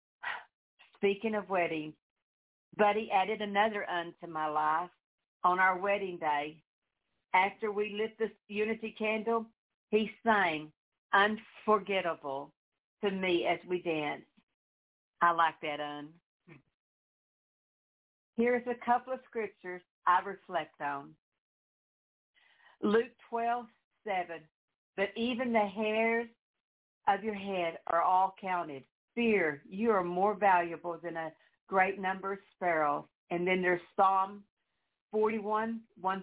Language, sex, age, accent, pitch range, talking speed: English, female, 50-69, American, 170-220 Hz, 115 wpm